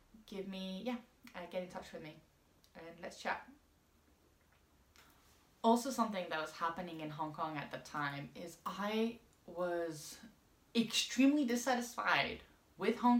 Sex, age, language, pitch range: female, 20-39, English, 155-210 Hz